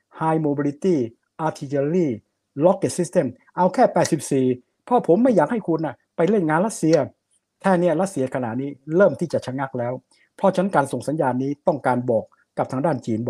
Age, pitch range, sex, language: 60-79, 130-170 Hz, male, Thai